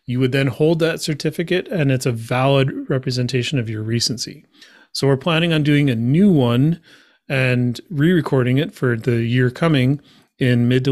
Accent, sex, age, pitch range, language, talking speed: American, male, 30-49, 125-150 Hz, English, 175 wpm